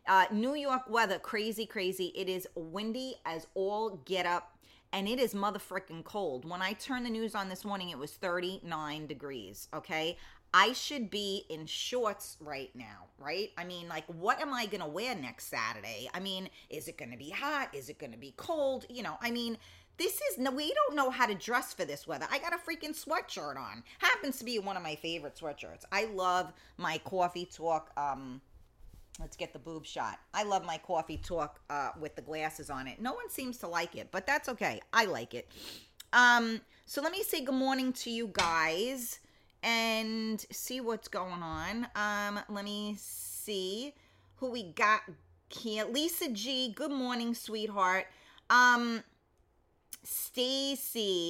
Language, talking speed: English, 180 wpm